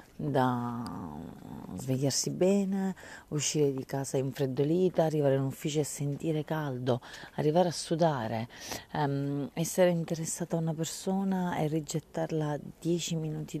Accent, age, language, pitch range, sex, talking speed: native, 40-59, Italian, 135-170 Hz, female, 115 wpm